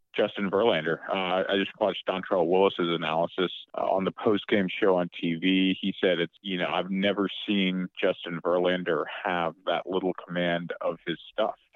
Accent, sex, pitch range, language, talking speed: American, male, 85-100 Hz, English, 170 wpm